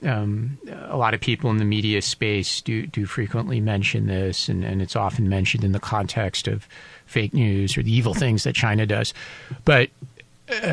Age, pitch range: 40-59, 100-125 Hz